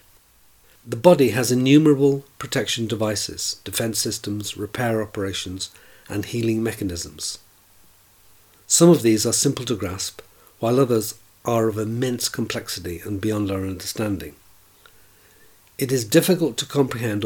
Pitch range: 100-120 Hz